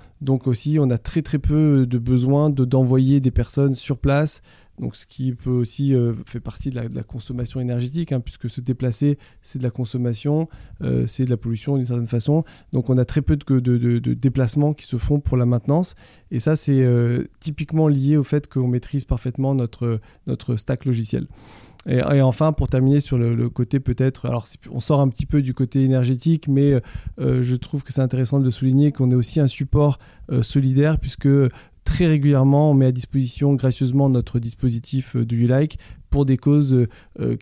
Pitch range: 120-140 Hz